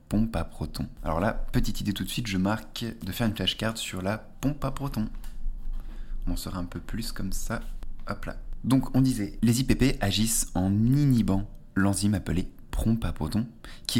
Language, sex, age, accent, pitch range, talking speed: French, male, 20-39, French, 85-115 Hz, 195 wpm